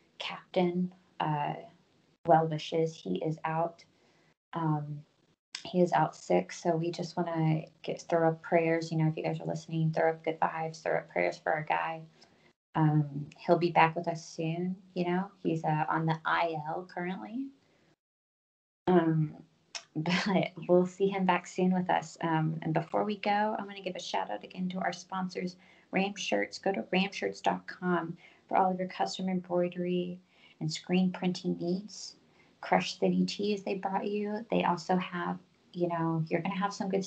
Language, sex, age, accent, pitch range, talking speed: English, female, 20-39, American, 160-185 Hz, 175 wpm